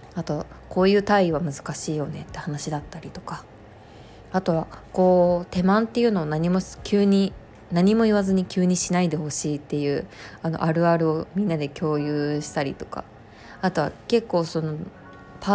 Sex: female